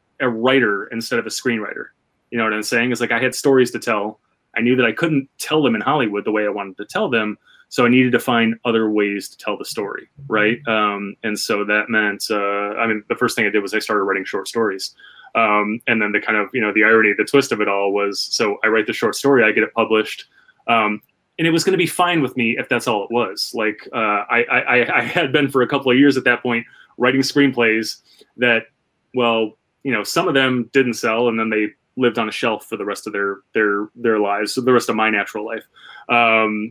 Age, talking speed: 20-39, 255 wpm